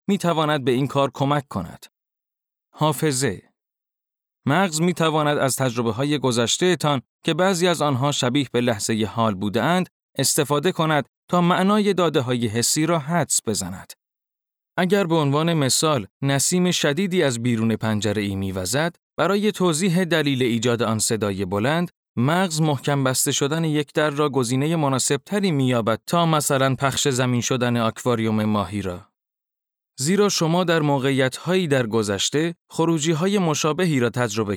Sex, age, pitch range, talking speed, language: male, 30-49, 120-165 Hz, 145 wpm, Persian